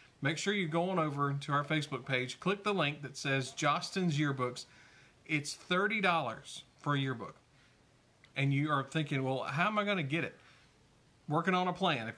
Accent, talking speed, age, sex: American, 185 wpm, 40-59, male